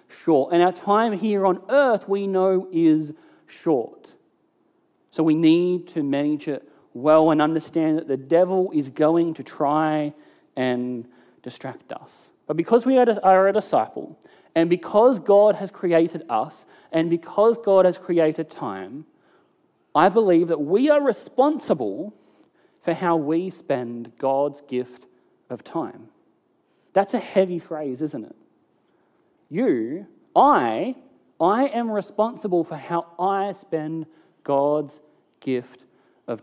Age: 30-49